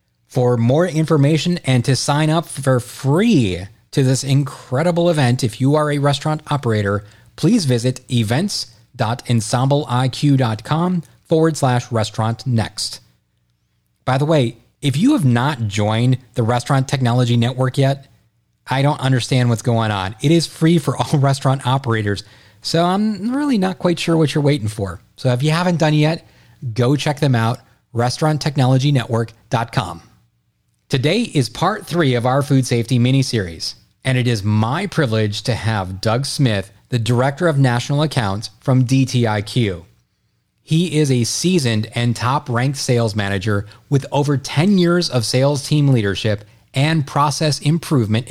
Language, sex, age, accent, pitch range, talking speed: English, male, 30-49, American, 115-145 Hz, 145 wpm